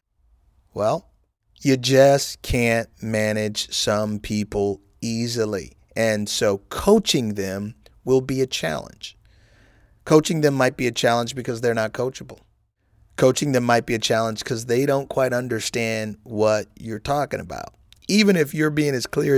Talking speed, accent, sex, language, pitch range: 145 wpm, American, male, English, 110-145 Hz